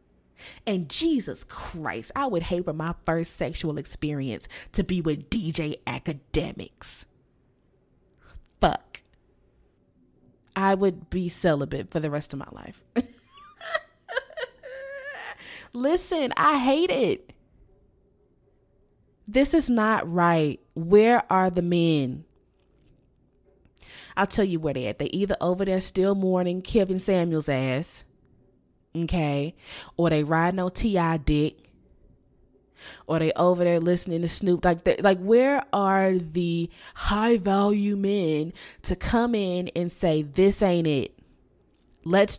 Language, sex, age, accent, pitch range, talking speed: English, female, 20-39, American, 160-200 Hz, 120 wpm